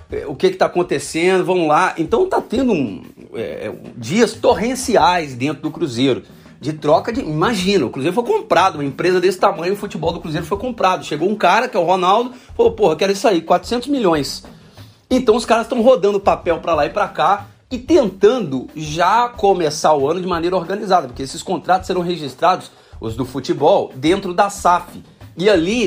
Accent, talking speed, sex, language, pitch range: Brazilian, 190 wpm, male, Portuguese, 150-215 Hz